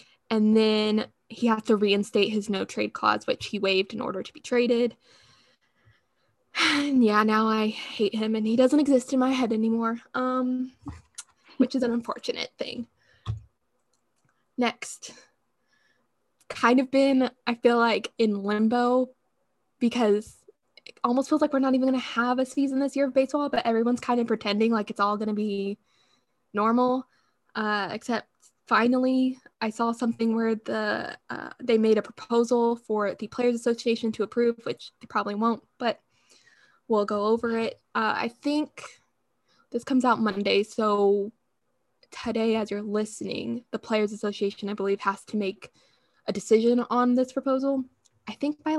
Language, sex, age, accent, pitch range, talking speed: English, female, 10-29, American, 215-255 Hz, 160 wpm